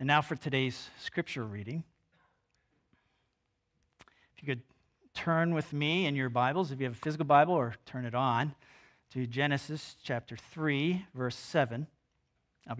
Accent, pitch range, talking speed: American, 115-150 Hz, 150 wpm